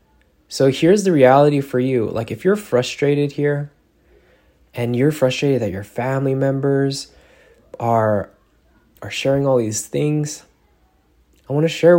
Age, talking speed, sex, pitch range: 20-39, 140 wpm, male, 110-145 Hz